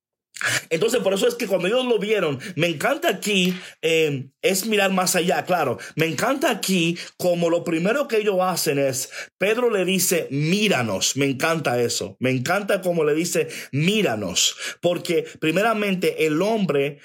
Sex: male